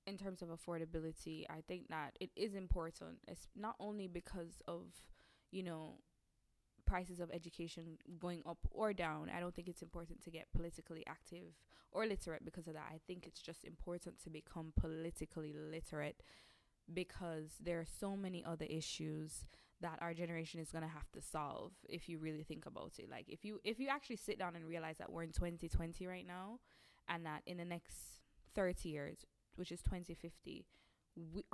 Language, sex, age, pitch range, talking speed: English, female, 20-39, 165-210 Hz, 180 wpm